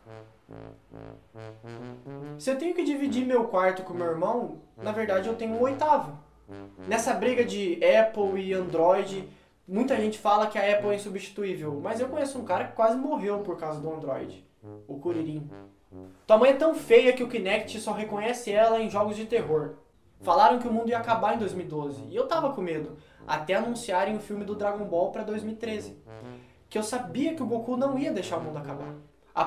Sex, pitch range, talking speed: male, 155-225 Hz, 190 wpm